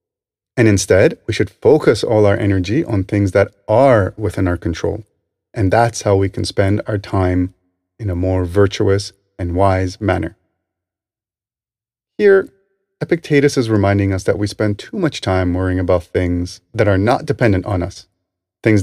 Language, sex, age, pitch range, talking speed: English, male, 30-49, 95-145 Hz, 165 wpm